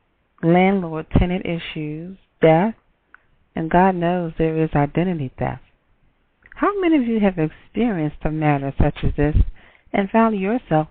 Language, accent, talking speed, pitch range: English, American, 140 wpm, 155-210 Hz